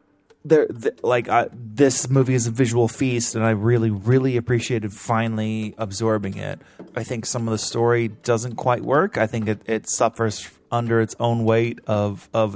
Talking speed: 180 wpm